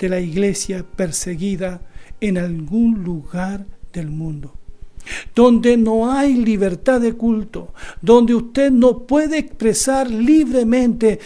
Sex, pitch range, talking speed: male, 175-230 Hz, 110 wpm